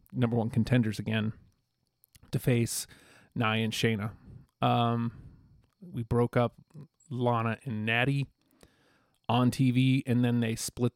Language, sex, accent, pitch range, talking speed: English, male, American, 110-130 Hz, 120 wpm